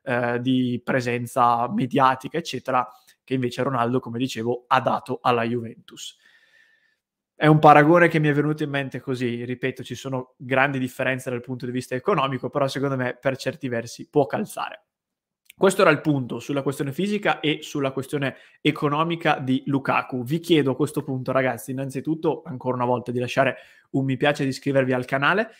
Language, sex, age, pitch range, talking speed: Italian, male, 20-39, 130-155 Hz, 170 wpm